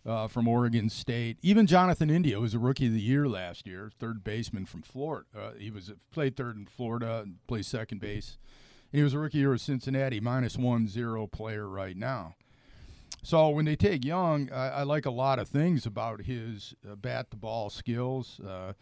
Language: English